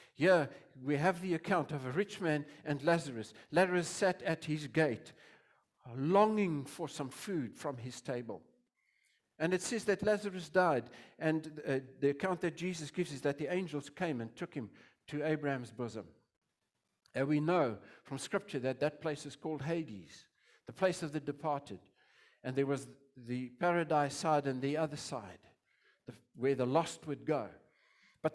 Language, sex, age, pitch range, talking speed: English, male, 50-69, 145-195 Hz, 165 wpm